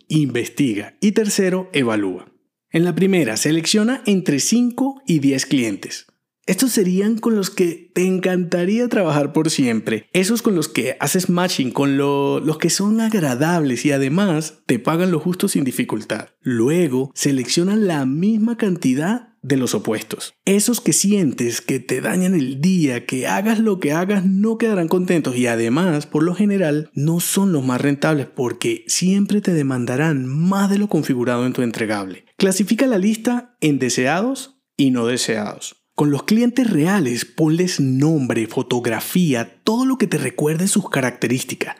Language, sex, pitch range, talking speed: Spanish, male, 140-205 Hz, 155 wpm